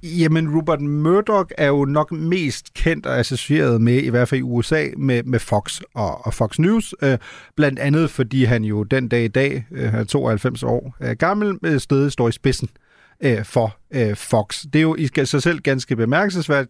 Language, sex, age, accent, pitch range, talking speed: Danish, male, 30-49, native, 120-155 Hz, 195 wpm